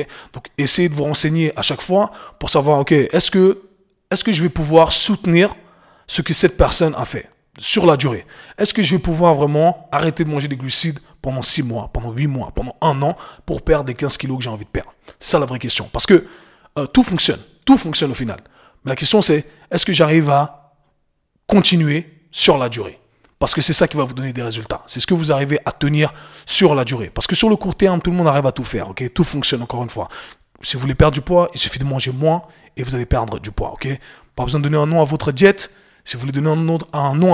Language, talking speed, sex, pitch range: French, 255 wpm, male, 135-170 Hz